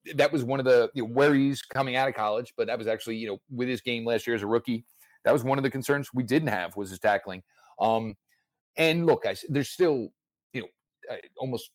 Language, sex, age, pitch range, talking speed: English, male, 30-49, 100-130 Hz, 240 wpm